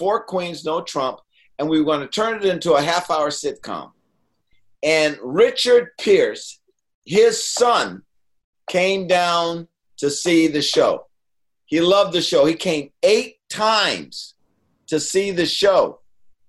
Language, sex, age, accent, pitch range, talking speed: English, male, 50-69, American, 130-200 Hz, 140 wpm